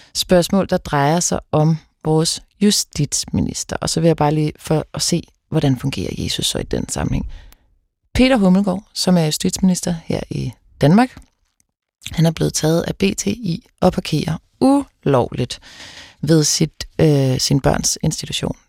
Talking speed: 150 wpm